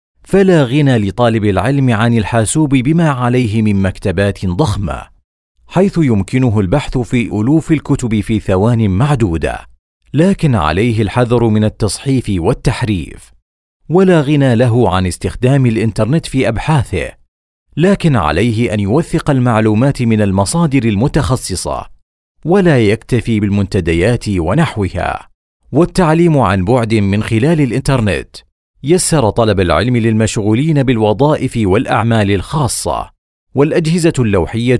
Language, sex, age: Arabic, male, 40-59